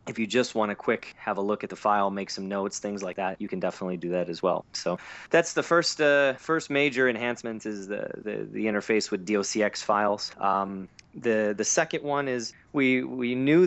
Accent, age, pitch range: American, 30-49, 100-115 Hz